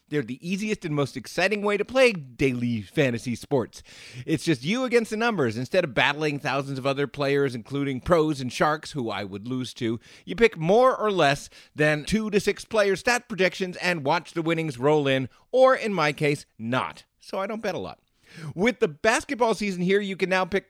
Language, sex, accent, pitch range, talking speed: English, male, American, 135-210 Hz, 210 wpm